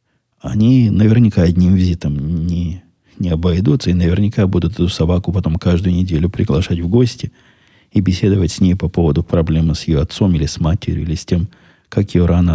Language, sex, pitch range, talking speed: Russian, male, 85-115 Hz, 175 wpm